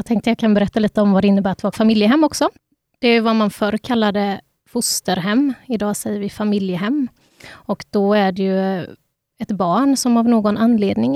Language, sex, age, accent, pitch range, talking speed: Swedish, female, 20-39, native, 205-230 Hz, 195 wpm